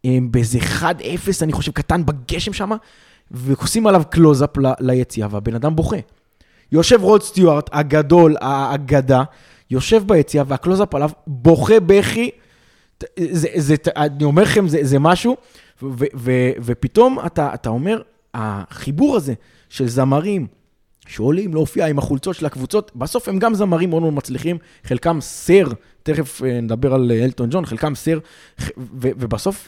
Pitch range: 120-170 Hz